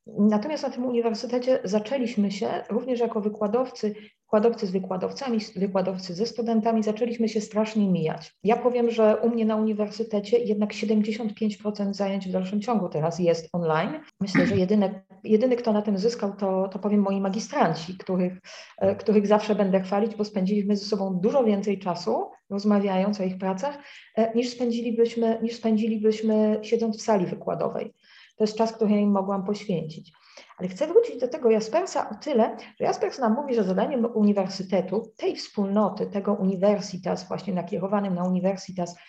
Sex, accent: female, Polish